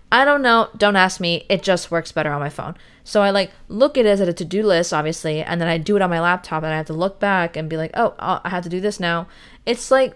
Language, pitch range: English, 175-230 Hz